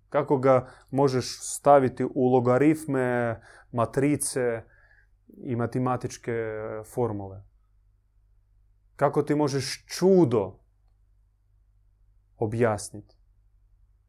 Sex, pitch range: male, 100-135 Hz